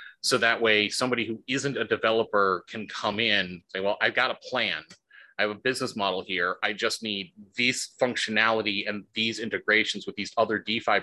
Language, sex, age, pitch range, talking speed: English, male, 30-49, 95-115 Hz, 190 wpm